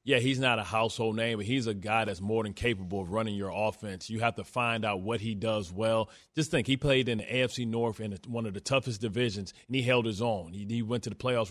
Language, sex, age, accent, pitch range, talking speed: English, male, 30-49, American, 110-130 Hz, 270 wpm